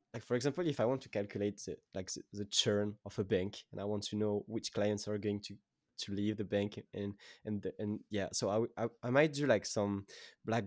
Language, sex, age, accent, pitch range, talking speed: English, male, 20-39, French, 105-125 Hz, 245 wpm